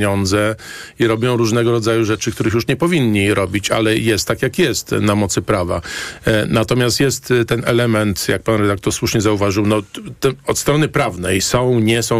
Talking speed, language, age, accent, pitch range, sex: 165 wpm, Polish, 40-59, native, 110-150 Hz, male